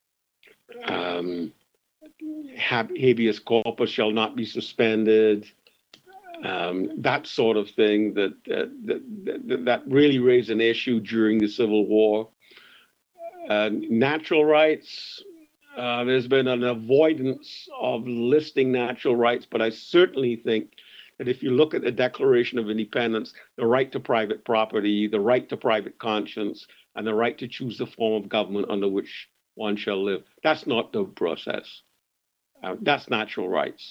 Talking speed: 145 wpm